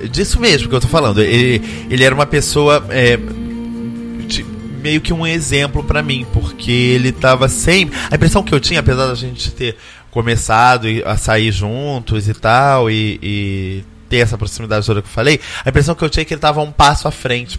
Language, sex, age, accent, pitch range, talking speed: Portuguese, male, 20-39, Brazilian, 105-130 Hz, 205 wpm